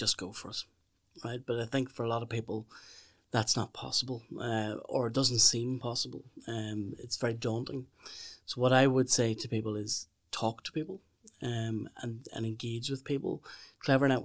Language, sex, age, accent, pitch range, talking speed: English, male, 30-49, Irish, 110-125 Hz, 185 wpm